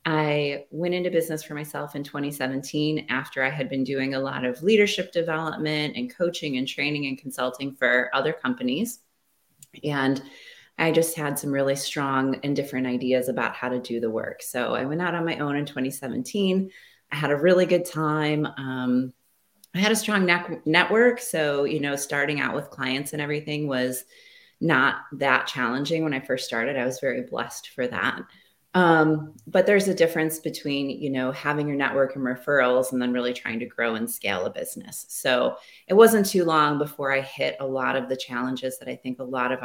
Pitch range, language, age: 130-165 Hz, English, 30-49